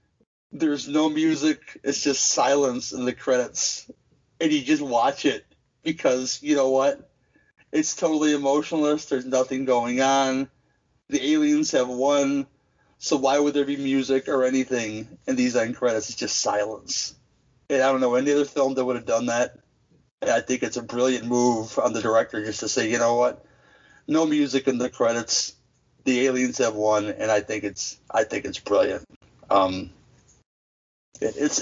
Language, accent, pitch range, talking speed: English, American, 125-155 Hz, 170 wpm